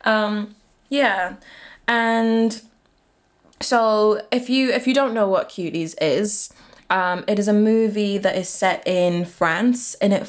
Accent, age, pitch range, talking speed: British, 20-39, 180-210 Hz, 145 wpm